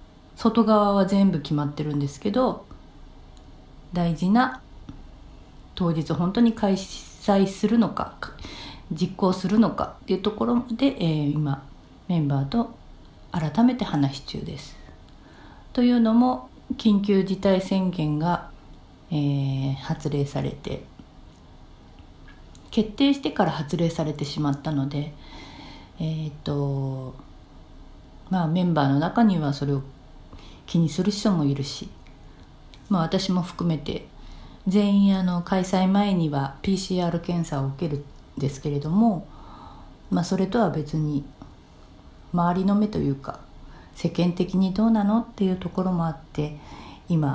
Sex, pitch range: female, 145-200 Hz